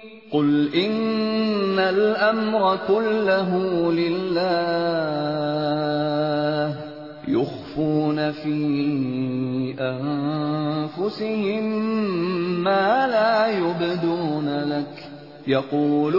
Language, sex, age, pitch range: Urdu, male, 30-49, 150-220 Hz